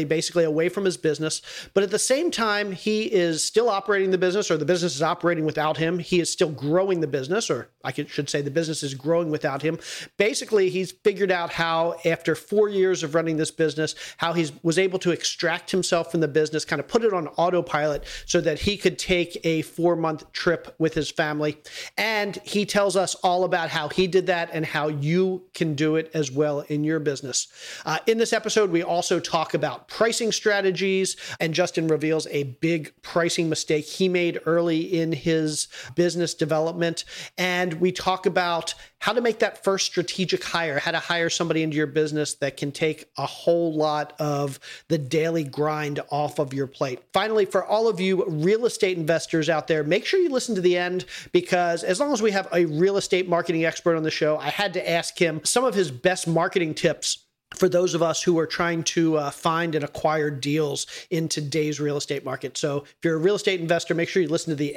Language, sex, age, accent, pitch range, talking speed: English, male, 40-59, American, 155-185 Hz, 210 wpm